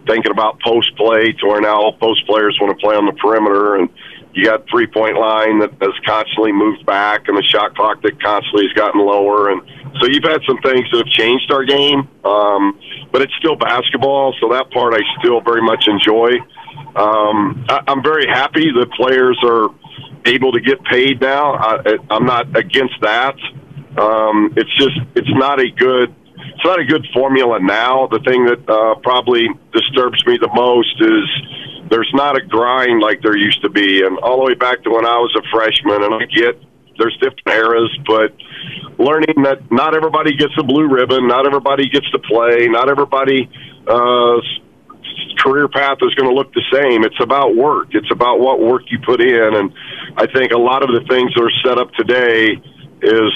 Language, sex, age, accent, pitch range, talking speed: English, male, 50-69, American, 110-140 Hz, 195 wpm